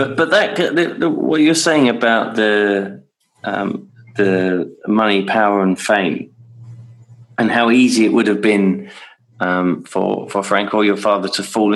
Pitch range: 95-120 Hz